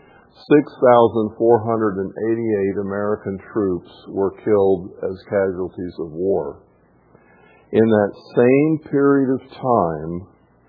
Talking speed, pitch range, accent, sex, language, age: 85 wpm, 95-120 Hz, American, male, English, 50-69